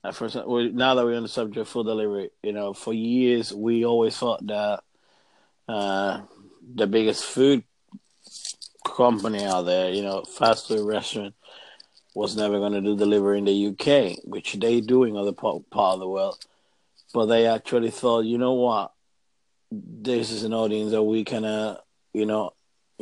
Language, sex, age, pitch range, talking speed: English, male, 30-49, 105-125 Hz, 170 wpm